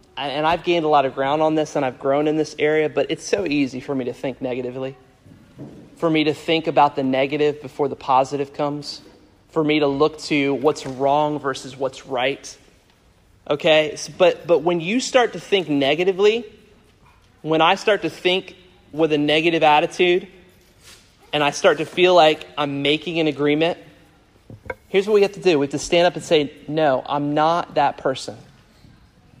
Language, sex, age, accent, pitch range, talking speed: English, male, 30-49, American, 135-165 Hz, 185 wpm